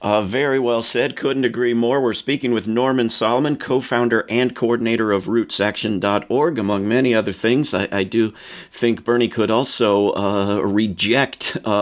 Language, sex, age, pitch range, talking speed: English, male, 50-69, 100-125 Hz, 155 wpm